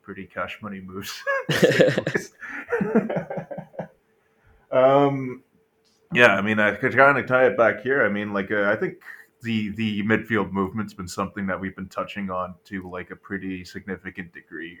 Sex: male